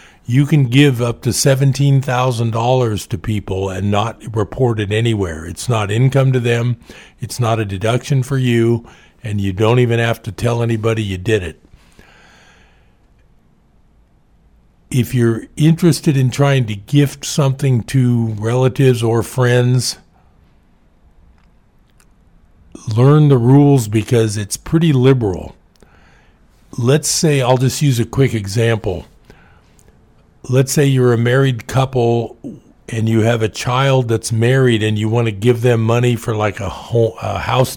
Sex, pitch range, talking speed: male, 105-130 Hz, 135 wpm